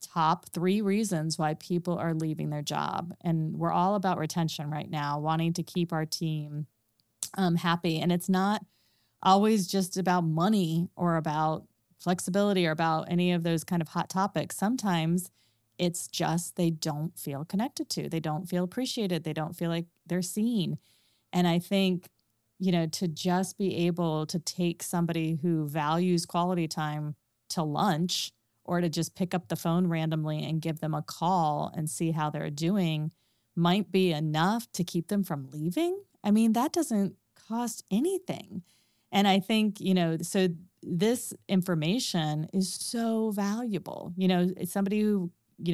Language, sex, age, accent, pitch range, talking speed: English, female, 30-49, American, 160-190 Hz, 165 wpm